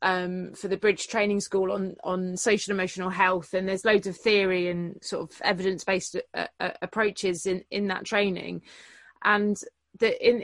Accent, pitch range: British, 185-215 Hz